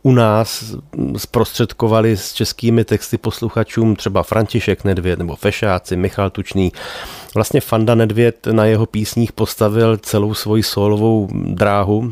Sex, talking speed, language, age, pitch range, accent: male, 125 wpm, Czech, 30-49, 95-110 Hz, native